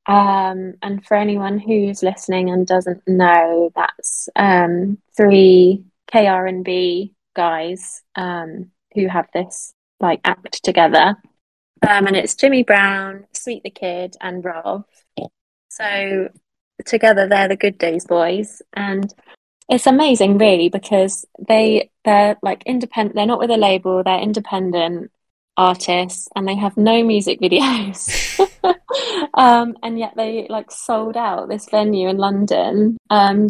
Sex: female